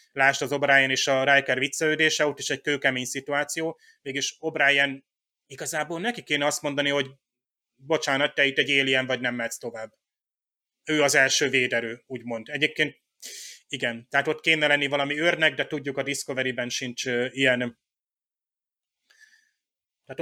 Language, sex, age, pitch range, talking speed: Hungarian, male, 30-49, 135-155 Hz, 145 wpm